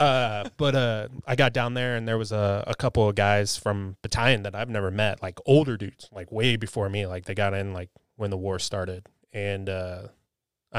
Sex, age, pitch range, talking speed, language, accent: male, 20-39, 105-120 Hz, 215 wpm, English, American